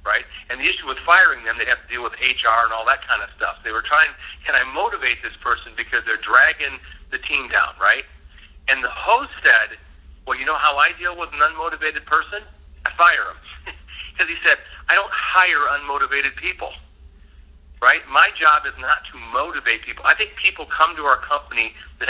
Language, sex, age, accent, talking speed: English, male, 50-69, American, 205 wpm